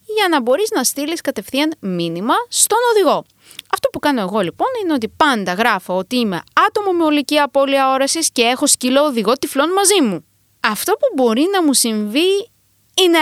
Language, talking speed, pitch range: Greek, 170 wpm, 220-355 Hz